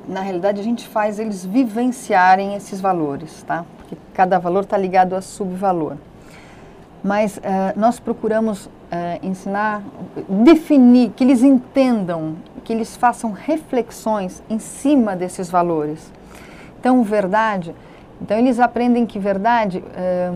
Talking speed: 125 wpm